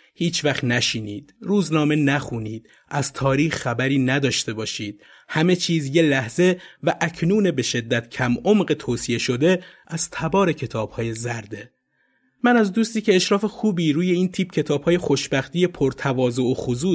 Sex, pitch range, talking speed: male, 120-175 Hz, 150 wpm